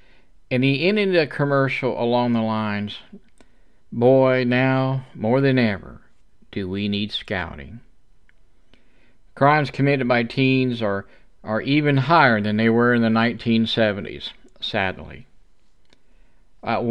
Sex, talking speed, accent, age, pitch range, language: male, 115 wpm, American, 50-69, 110-135 Hz, English